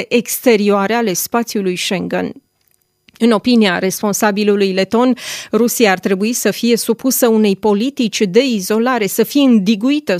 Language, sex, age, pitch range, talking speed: Romanian, female, 30-49, 200-250 Hz, 125 wpm